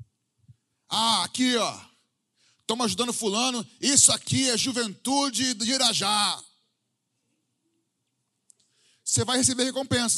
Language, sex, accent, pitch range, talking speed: Portuguese, male, Brazilian, 125-215 Hz, 100 wpm